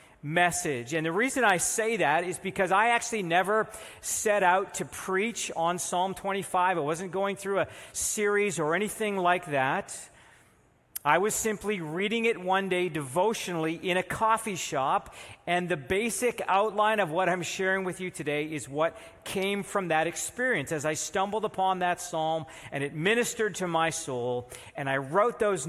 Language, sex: English, male